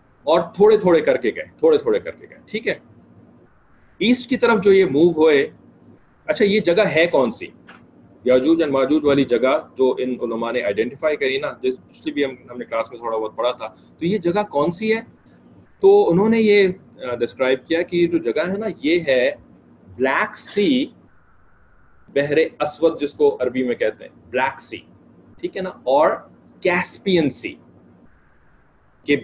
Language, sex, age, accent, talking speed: English, male, 30-49, Indian, 100 wpm